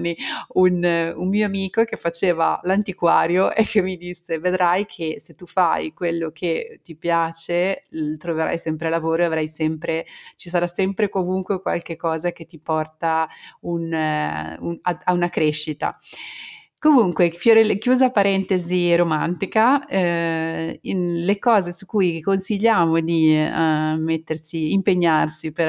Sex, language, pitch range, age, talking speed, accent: female, Italian, 155-180 Hz, 30-49, 130 wpm, native